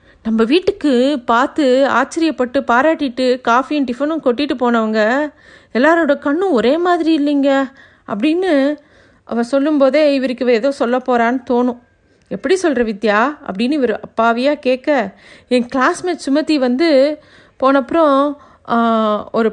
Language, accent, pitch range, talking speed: Tamil, native, 235-290 Hz, 110 wpm